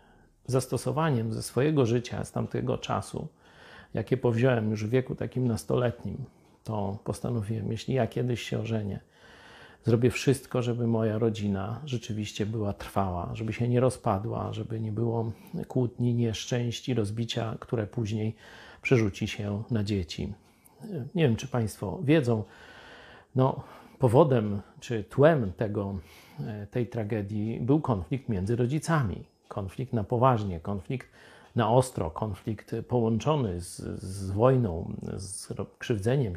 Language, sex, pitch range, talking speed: Polish, male, 100-130 Hz, 120 wpm